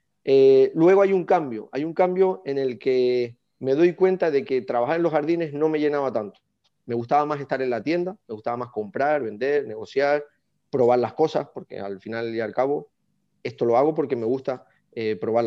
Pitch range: 125-170 Hz